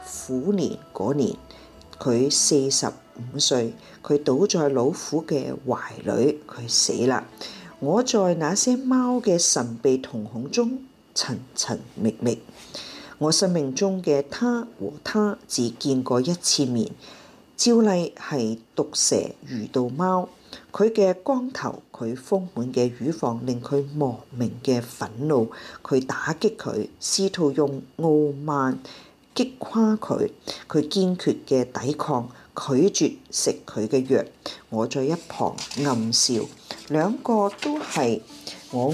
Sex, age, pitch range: female, 40-59, 125-190 Hz